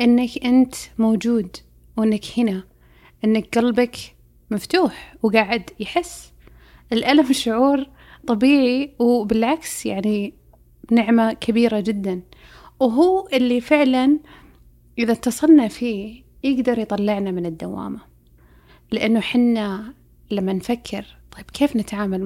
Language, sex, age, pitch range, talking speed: Arabic, female, 30-49, 205-255 Hz, 95 wpm